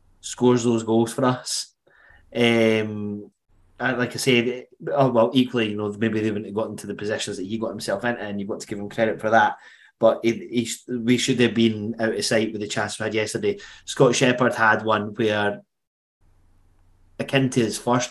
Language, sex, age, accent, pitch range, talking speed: English, male, 20-39, British, 105-120 Hz, 200 wpm